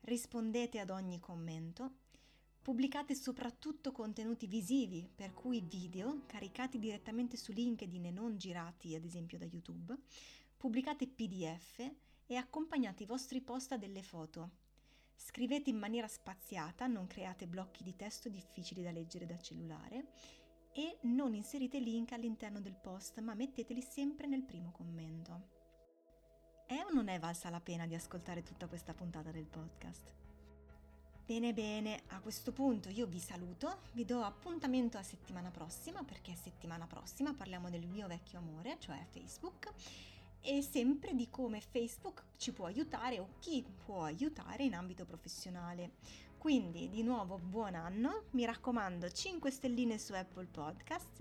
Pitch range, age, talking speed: 170-250 Hz, 30-49, 145 wpm